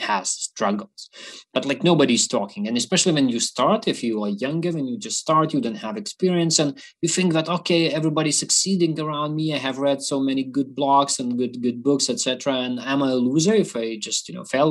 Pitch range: 120-175 Hz